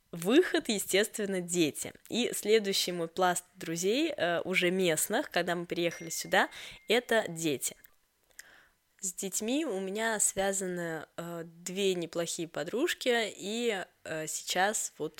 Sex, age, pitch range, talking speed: female, 10-29, 160-195 Hz, 105 wpm